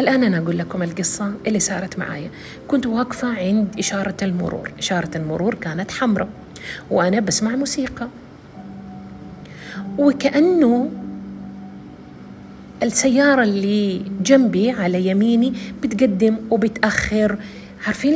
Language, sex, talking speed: Arabic, female, 95 wpm